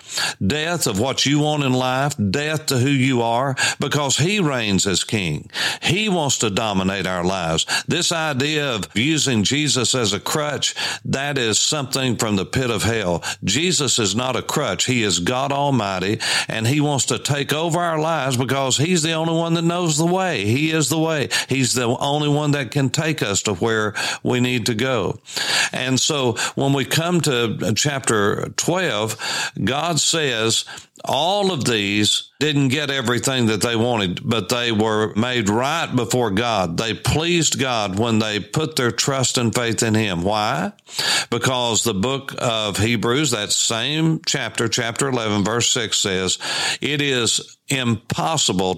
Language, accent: English, American